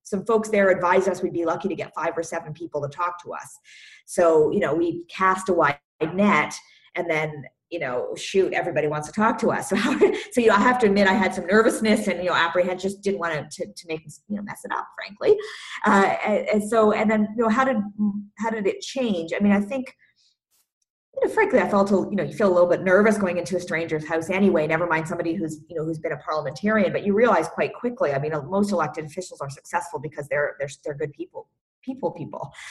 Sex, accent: female, American